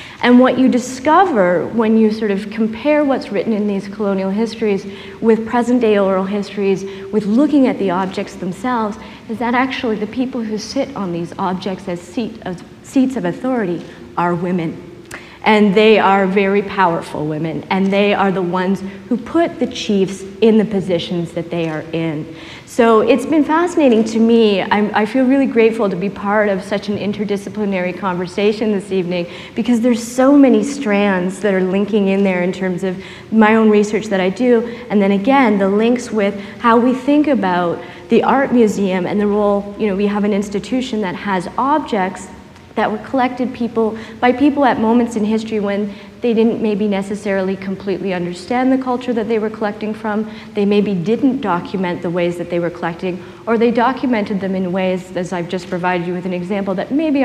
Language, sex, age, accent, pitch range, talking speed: English, female, 40-59, American, 190-235 Hz, 185 wpm